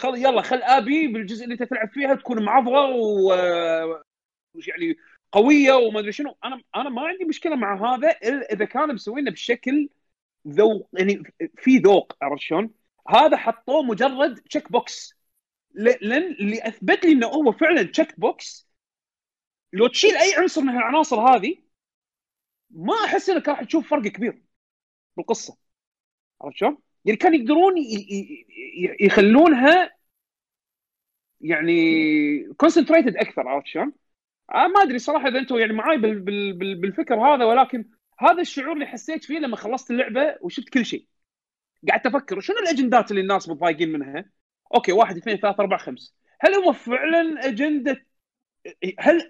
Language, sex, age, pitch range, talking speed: Arabic, male, 40-59, 205-305 Hz, 145 wpm